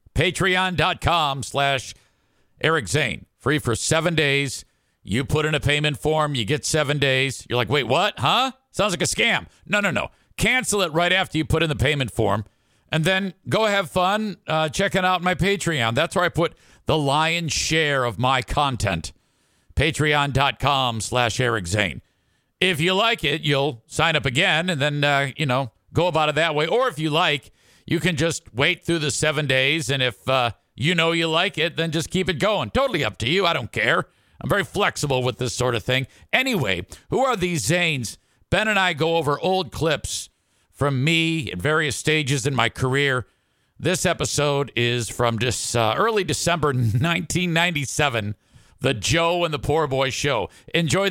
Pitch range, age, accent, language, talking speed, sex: 125-170 Hz, 50-69, American, English, 185 wpm, male